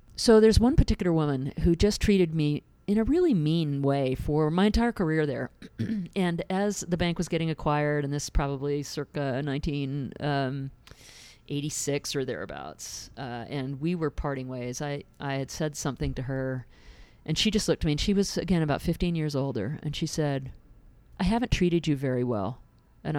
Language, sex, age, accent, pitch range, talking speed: English, female, 40-59, American, 140-185 Hz, 185 wpm